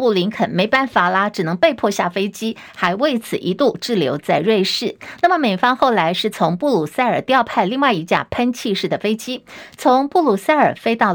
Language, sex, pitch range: Chinese, female, 195-260 Hz